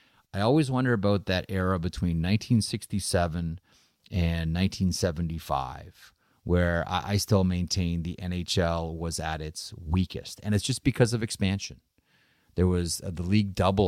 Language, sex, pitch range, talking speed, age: English, male, 85-105 Hz, 140 wpm, 30-49